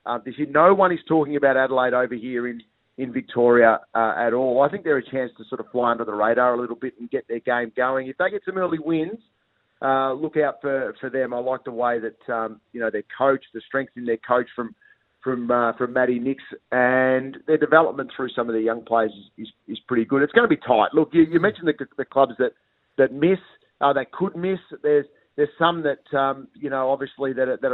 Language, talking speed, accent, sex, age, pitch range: English, 250 wpm, Australian, male, 30-49, 120-150 Hz